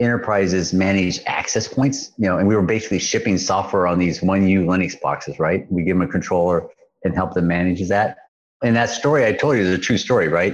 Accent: American